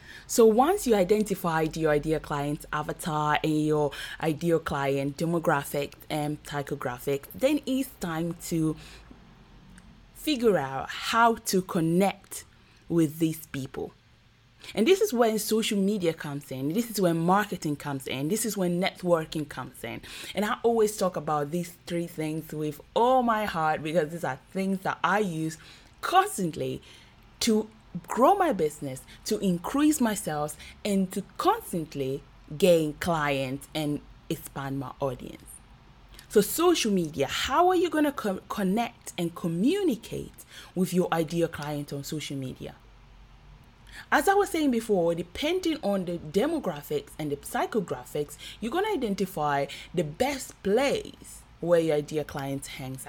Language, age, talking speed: English, 20-39, 145 wpm